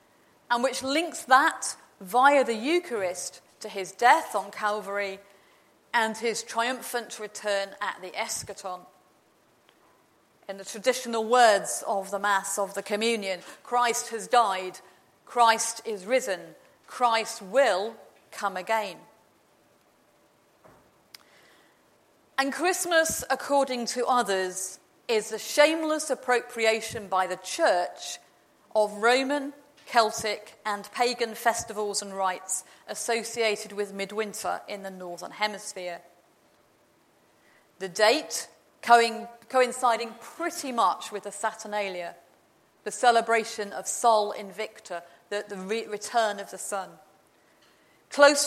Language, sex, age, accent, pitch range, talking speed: English, female, 40-59, British, 205-255 Hz, 105 wpm